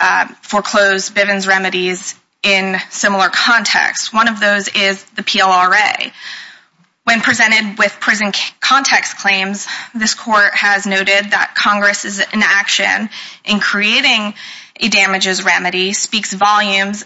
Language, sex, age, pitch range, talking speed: English, female, 20-39, 190-220 Hz, 120 wpm